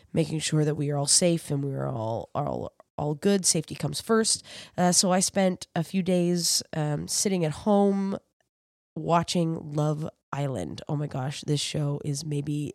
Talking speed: 180 wpm